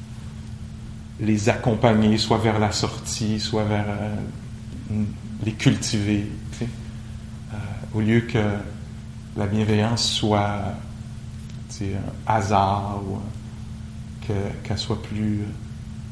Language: English